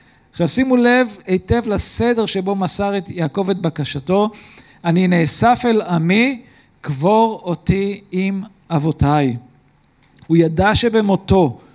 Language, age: Hebrew, 50-69